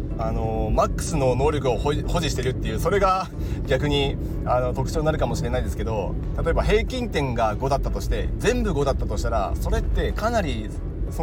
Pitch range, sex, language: 100-145 Hz, male, Japanese